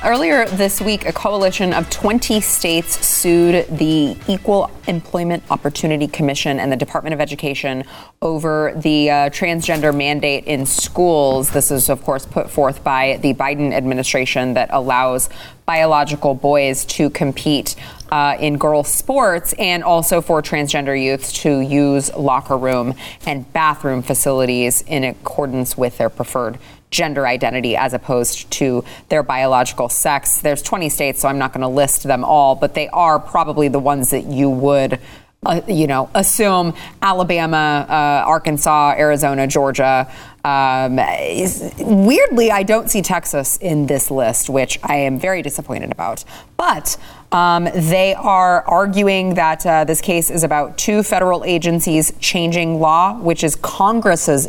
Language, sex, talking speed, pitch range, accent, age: English, female, 150 wpm, 135-170 Hz, American, 20-39